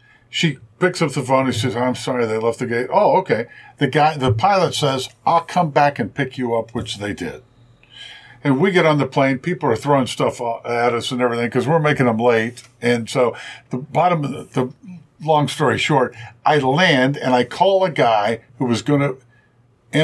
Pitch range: 120-150 Hz